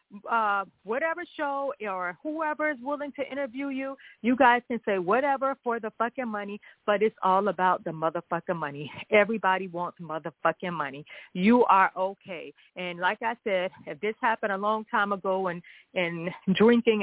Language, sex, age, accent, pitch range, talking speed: English, female, 40-59, American, 185-240 Hz, 165 wpm